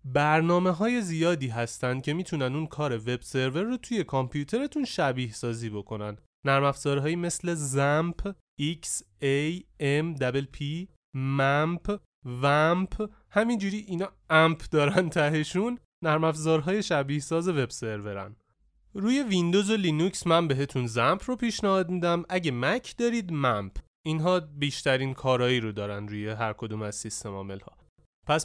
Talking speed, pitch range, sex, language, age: 125 wpm, 130-185 Hz, male, Persian, 30-49